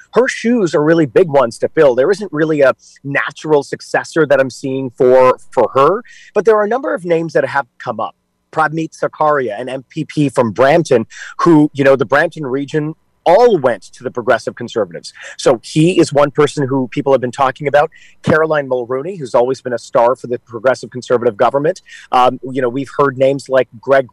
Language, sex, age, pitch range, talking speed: English, male, 30-49, 130-160 Hz, 200 wpm